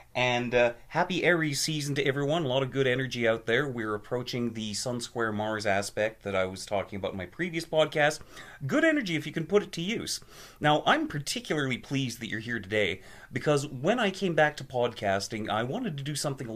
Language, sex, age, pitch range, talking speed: English, male, 30-49, 120-165 Hz, 215 wpm